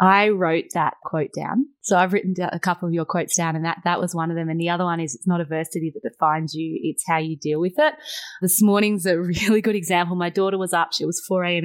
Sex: female